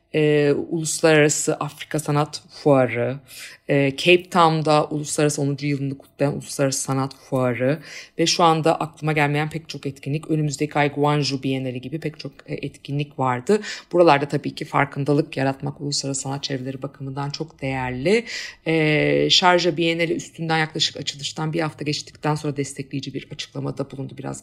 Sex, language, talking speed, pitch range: female, Turkish, 140 wpm, 135-165 Hz